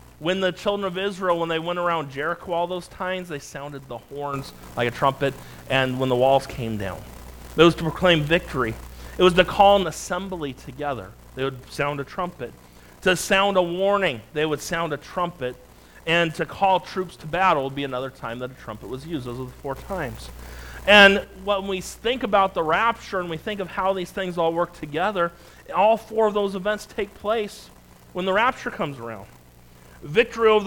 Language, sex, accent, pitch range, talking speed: English, male, American, 135-195 Hz, 200 wpm